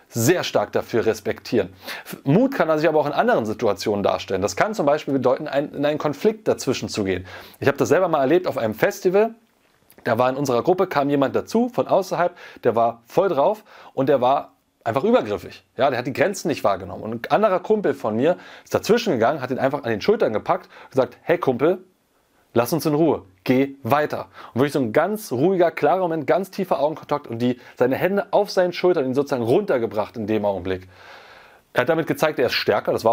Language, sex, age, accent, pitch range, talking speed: German, male, 30-49, German, 125-180 Hz, 215 wpm